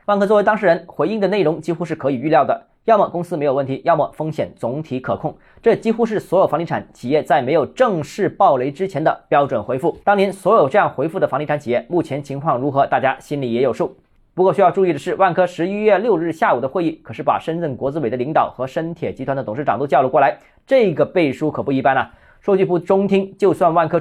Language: Chinese